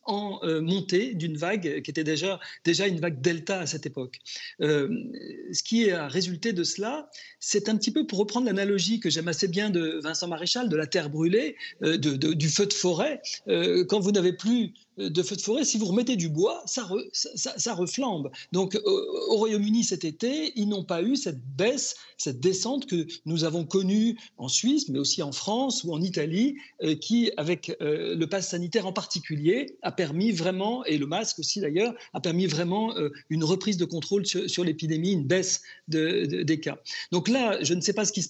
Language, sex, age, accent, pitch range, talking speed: French, male, 40-59, French, 165-225 Hz, 210 wpm